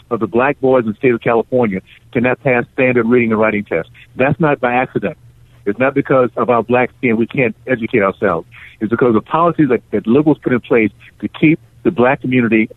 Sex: male